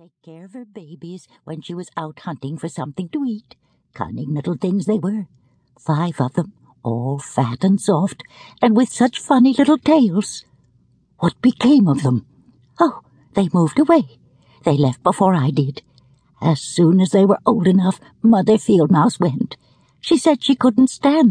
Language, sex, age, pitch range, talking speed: English, female, 60-79, 150-235 Hz, 170 wpm